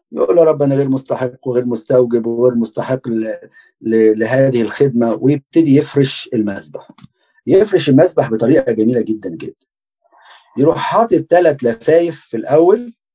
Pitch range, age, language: 115-165 Hz, 40-59, Arabic